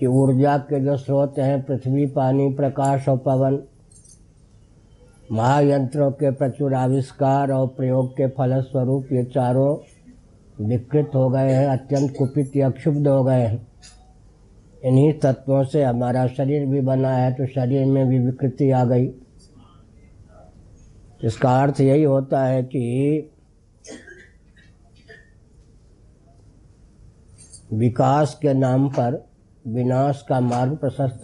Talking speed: 115 wpm